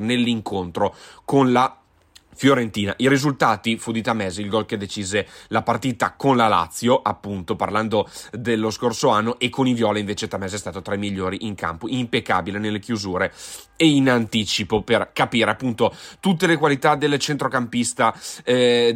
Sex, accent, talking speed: male, native, 160 wpm